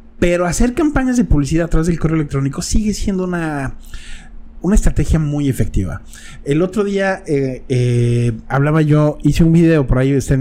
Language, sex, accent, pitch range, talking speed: Spanish, male, Mexican, 130-170 Hz, 180 wpm